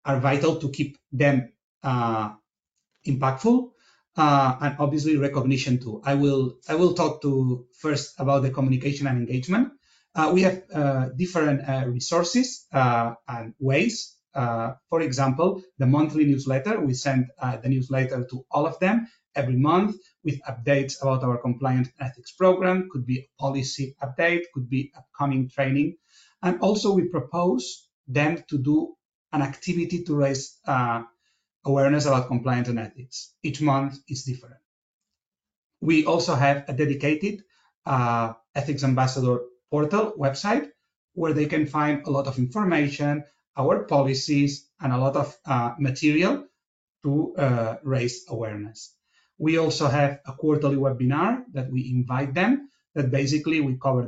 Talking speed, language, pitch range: 145 wpm, English, 130-155 Hz